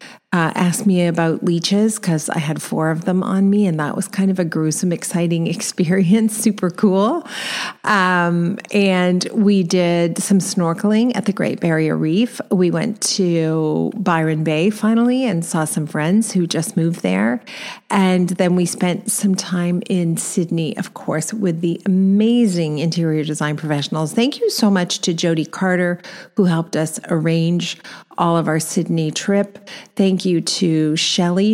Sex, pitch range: female, 160-195 Hz